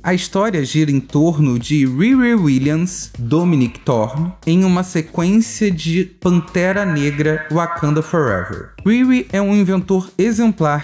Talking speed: 125 wpm